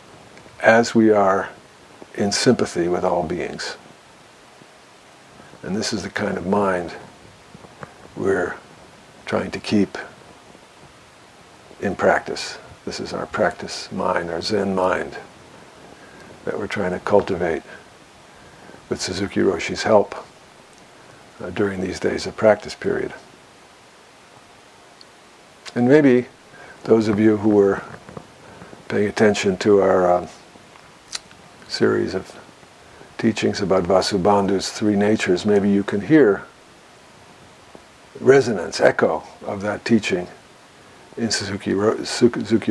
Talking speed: 110 wpm